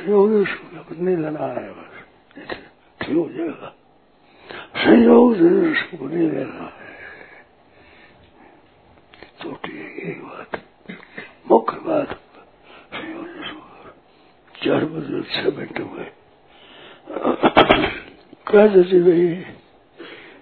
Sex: male